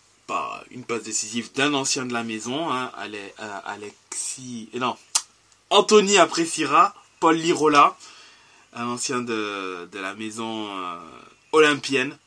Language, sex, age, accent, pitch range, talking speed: French, male, 20-39, French, 110-135 Hz, 110 wpm